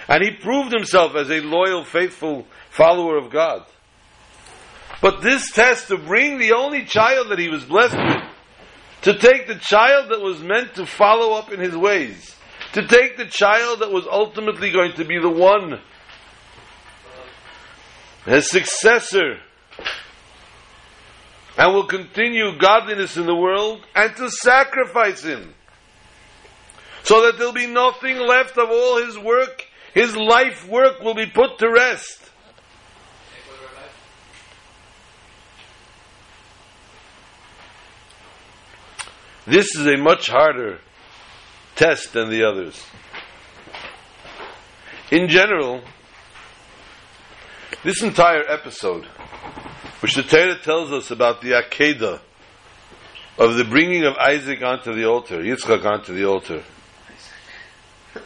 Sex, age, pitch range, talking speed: male, 50-69, 145-235 Hz, 120 wpm